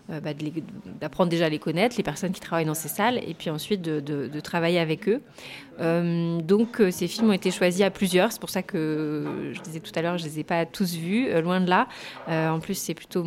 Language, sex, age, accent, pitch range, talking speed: English, female, 30-49, French, 165-190 Hz, 250 wpm